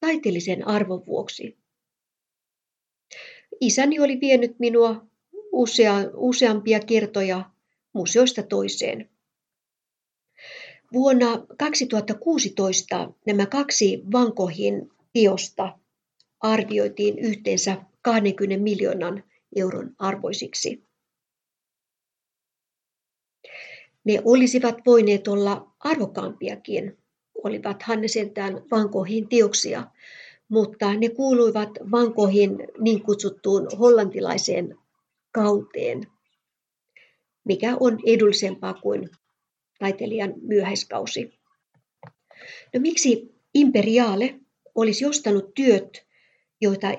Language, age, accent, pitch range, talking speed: Finnish, 50-69, native, 200-245 Hz, 70 wpm